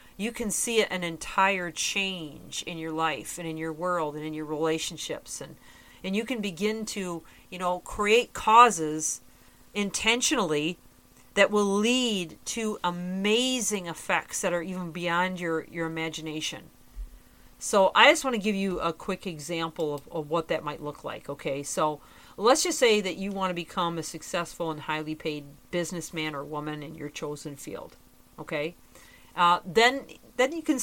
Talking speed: 165 wpm